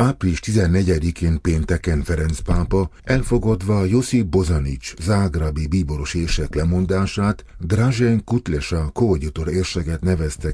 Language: Hungarian